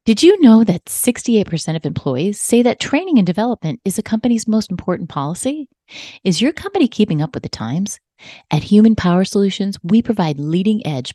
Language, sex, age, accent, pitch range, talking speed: English, female, 30-49, American, 160-220 Hz, 180 wpm